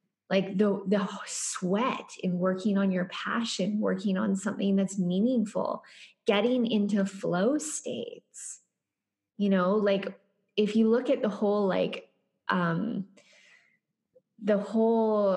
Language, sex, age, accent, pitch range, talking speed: English, female, 20-39, American, 185-220 Hz, 120 wpm